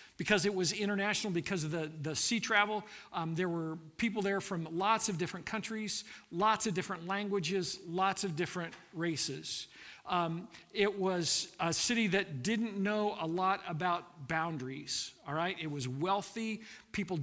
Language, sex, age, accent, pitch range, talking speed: English, male, 50-69, American, 165-210 Hz, 160 wpm